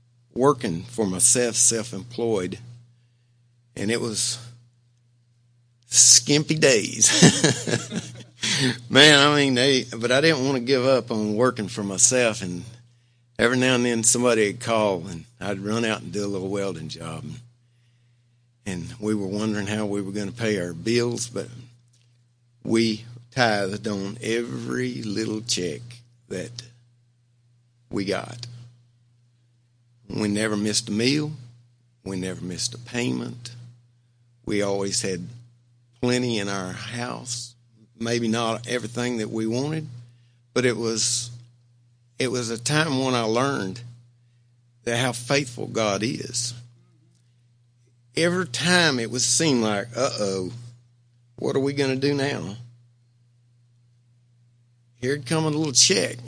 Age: 60-79